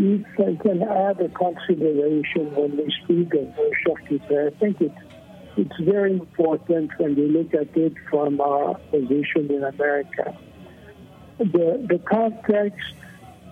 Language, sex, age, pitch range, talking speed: English, male, 60-79, 155-195 Hz, 135 wpm